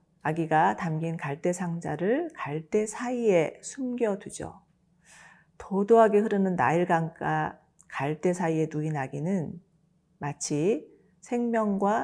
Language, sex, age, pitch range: Korean, female, 40-59, 160-205 Hz